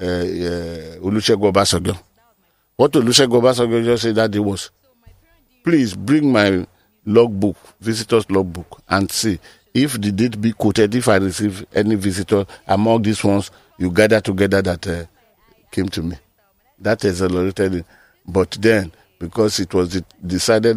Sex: male